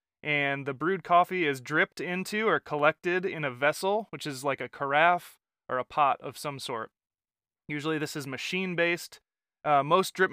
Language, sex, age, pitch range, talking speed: English, male, 20-39, 135-170 Hz, 175 wpm